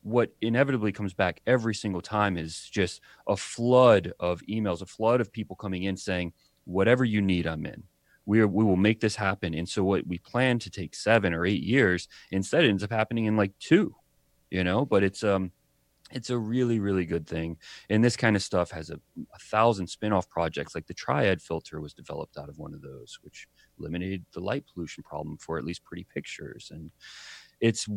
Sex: male